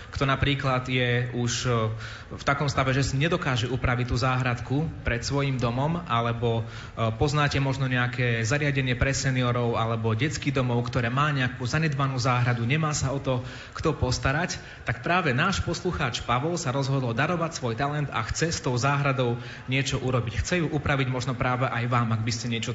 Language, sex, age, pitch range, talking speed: Slovak, male, 30-49, 120-145 Hz, 170 wpm